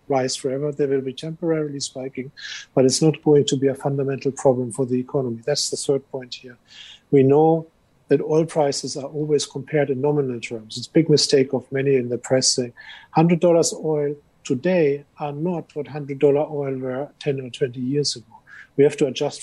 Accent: German